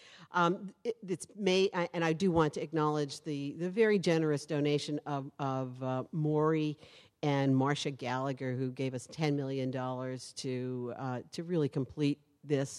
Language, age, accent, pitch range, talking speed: English, 50-69, American, 135-185 Hz, 160 wpm